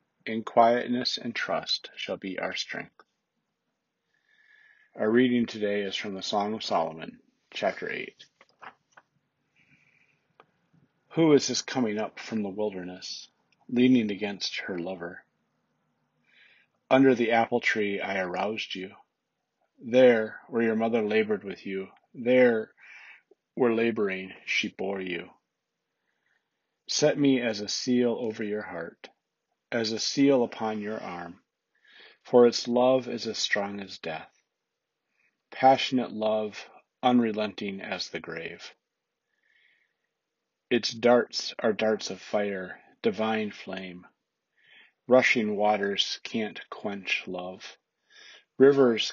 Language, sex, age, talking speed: English, male, 40-59, 115 wpm